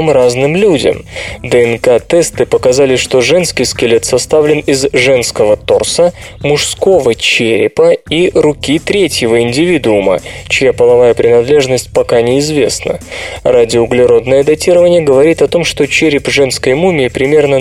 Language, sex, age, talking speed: Russian, male, 20-39, 110 wpm